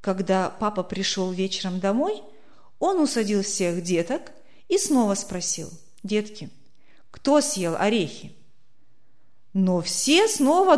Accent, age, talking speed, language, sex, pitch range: native, 30-49, 105 wpm, Russian, female, 175-275 Hz